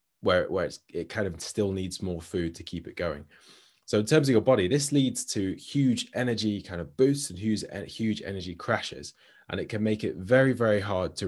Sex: male